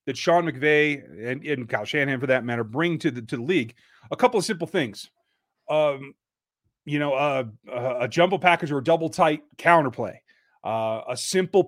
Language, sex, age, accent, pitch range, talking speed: English, male, 30-49, American, 125-170 Hz, 185 wpm